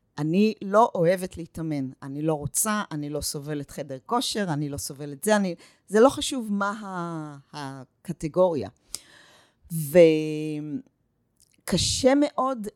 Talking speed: 120 wpm